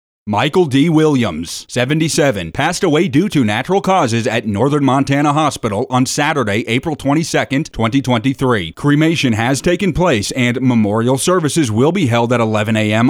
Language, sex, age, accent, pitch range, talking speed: English, male, 30-49, American, 115-150 Hz, 145 wpm